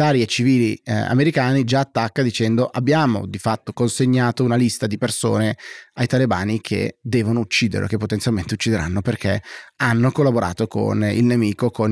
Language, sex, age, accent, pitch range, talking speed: Italian, male, 30-49, native, 110-125 Hz, 150 wpm